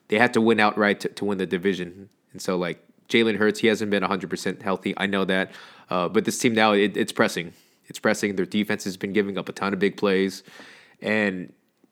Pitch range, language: 90-105 Hz, English